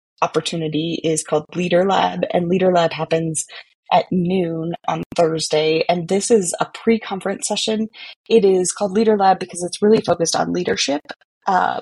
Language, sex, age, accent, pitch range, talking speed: English, female, 20-39, American, 160-195 Hz, 155 wpm